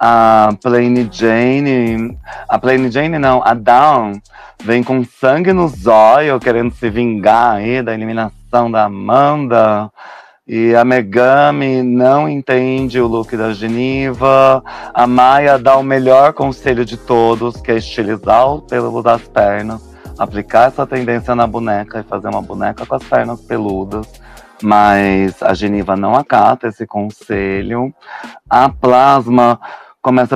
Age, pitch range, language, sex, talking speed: 30-49, 115-135 Hz, Portuguese, male, 135 wpm